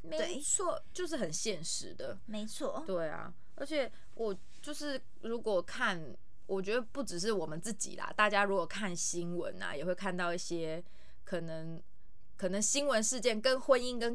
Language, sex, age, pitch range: Chinese, female, 20-39, 180-235 Hz